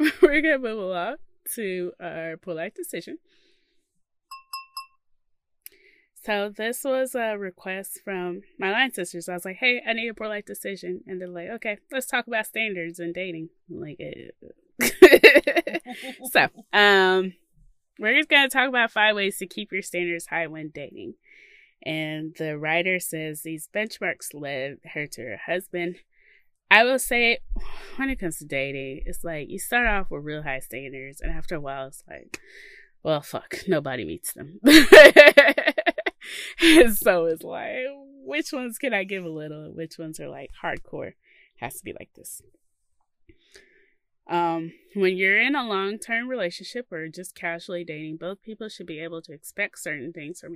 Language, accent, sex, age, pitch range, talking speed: English, American, female, 20-39, 165-250 Hz, 165 wpm